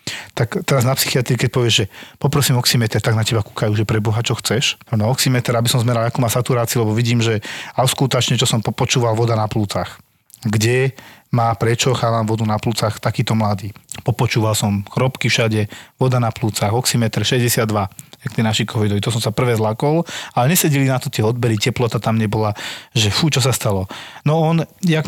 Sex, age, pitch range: male, 40-59, 115-135 Hz